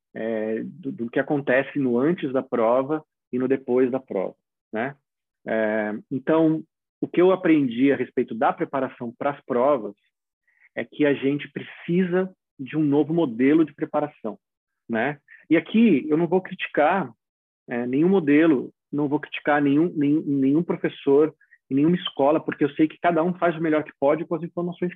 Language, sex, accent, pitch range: Portuguese, male, Brazilian, 125-160 Hz